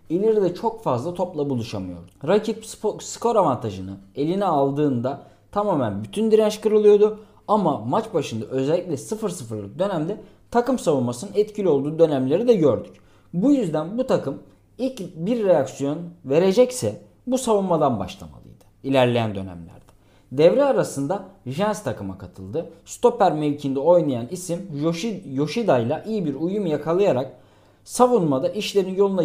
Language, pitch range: Turkish, 130-210 Hz